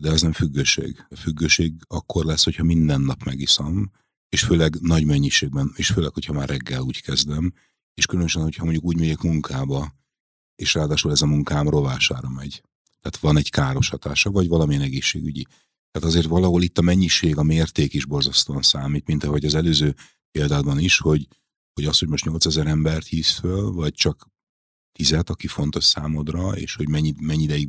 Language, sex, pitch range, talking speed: Hungarian, male, 70-80 Hz, 175 wpm